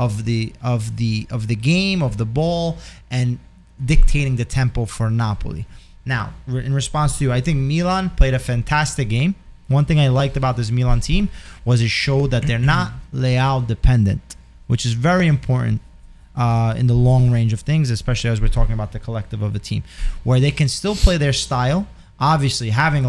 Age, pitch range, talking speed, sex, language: 20-39, 115-140 Hz, 190 wpm, male, English